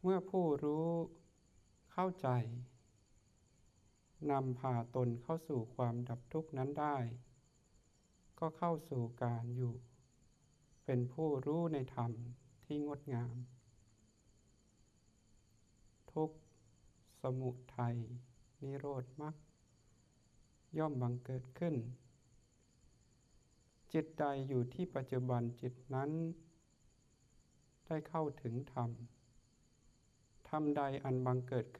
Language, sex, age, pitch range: Thai, male, 60-79, 120-145 Hz